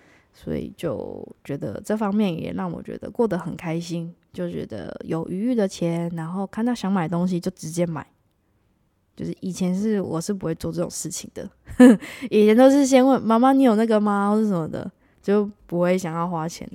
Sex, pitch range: female, 175-215 Hz